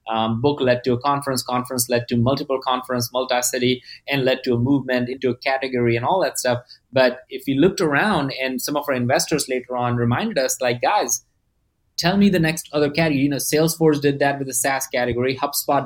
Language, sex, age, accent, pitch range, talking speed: English, male, 20-39, Indian, 125-150 Hz, 210 wpm